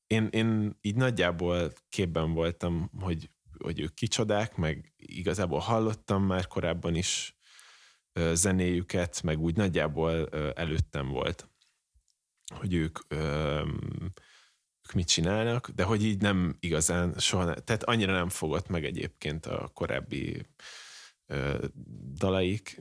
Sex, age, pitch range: male, 30-49, 85-100 Hz